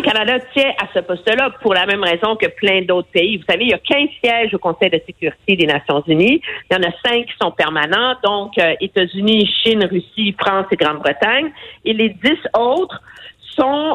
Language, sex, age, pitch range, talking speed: French, female, 50-69, 180-255 Hz, 205 wpm